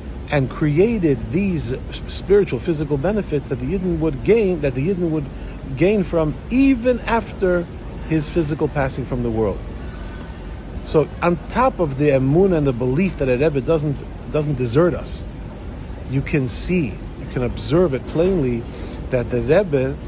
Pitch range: 125-170 Hz